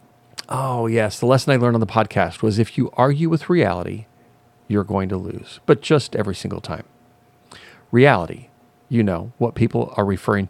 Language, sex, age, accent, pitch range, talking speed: English, male, 40-59, American, 100-130 Hz, 175 wpm